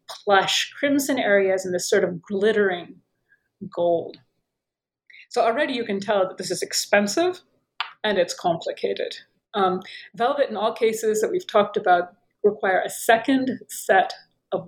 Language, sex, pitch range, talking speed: English, female, 205-280 Hz, 145 wpm